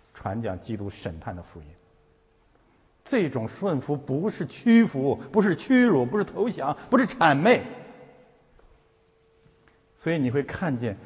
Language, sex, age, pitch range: Chinese, male, 60-79, 105-150 Hz